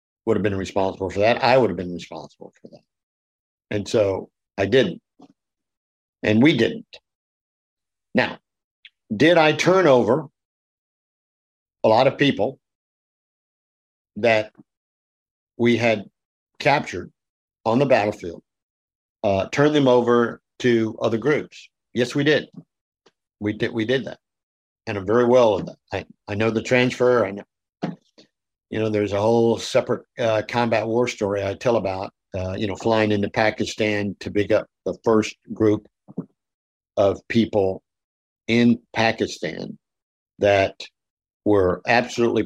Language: English